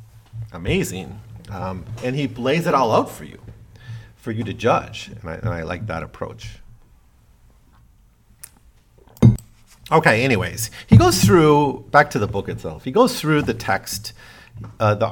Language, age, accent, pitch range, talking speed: English, 40-59, American, 95-120 Hz, 145 wpm